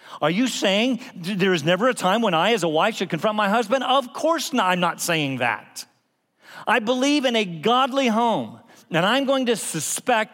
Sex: male